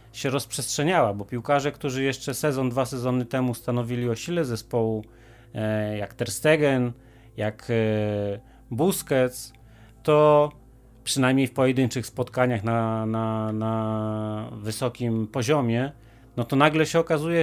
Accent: native